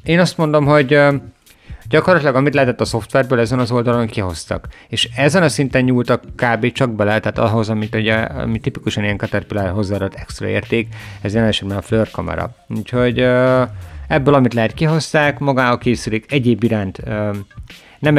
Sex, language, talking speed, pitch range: male, Hungarian, 155 wpm, 105-130 Hz